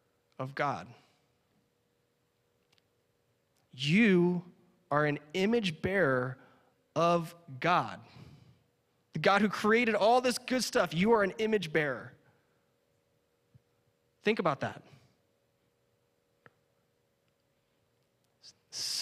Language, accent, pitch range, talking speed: English, American, 135-175 Hz, 80 wpm